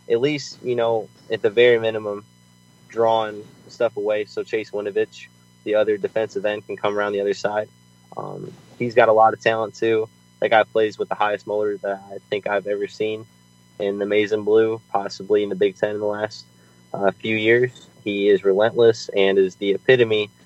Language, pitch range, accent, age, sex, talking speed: English, 95-115 Hz, American, 20-39, male, 200 wpm